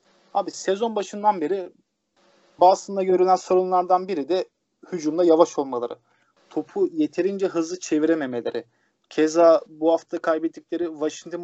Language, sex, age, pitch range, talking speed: Turkish, male, 30-49, 155-185 Hz, 110 wpm